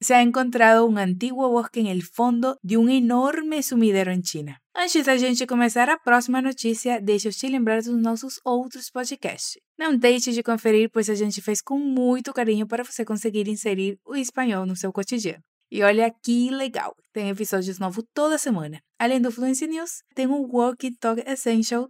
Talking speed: 185 wpm